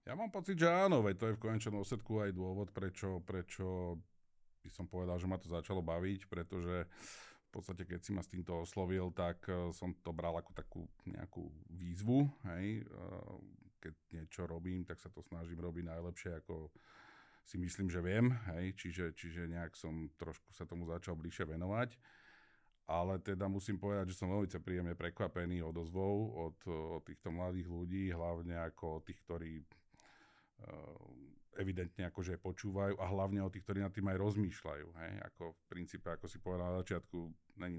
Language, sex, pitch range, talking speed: Slovak, male, 85-95 Hz, 170 wpm